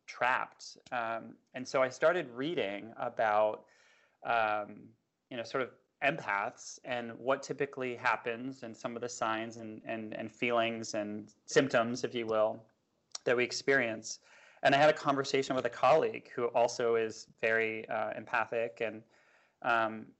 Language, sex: English, male